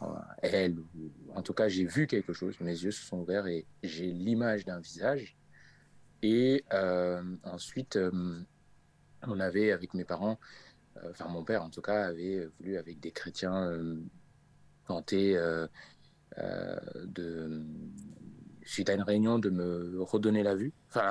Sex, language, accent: male, French, French